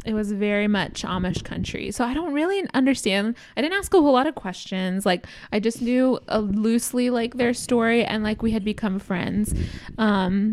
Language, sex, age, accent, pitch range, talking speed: English, female, 20-39, American, 205-255 Hz, 200 wpm